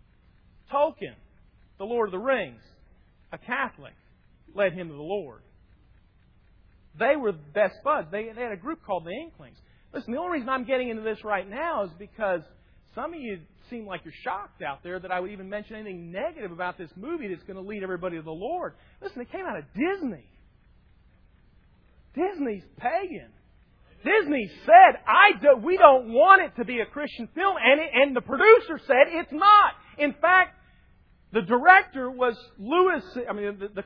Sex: male